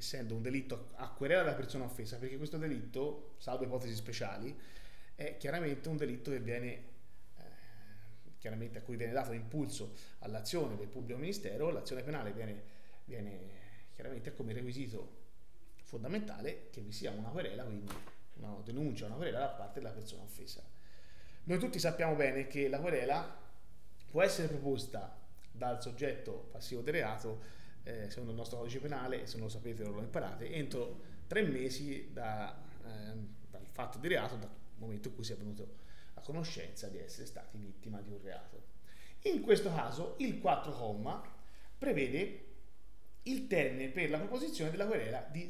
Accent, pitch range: native, 105-145 Hz